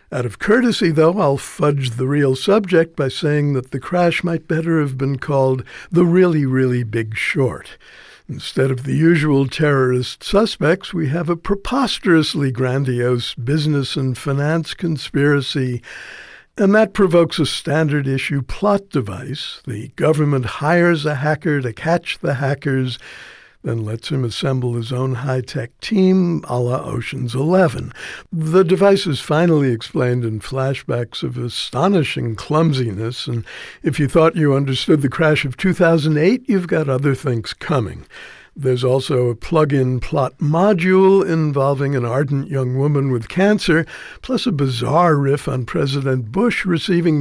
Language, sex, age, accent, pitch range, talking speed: English, male, 60-79, American, 130-165 Hz, 145 wpm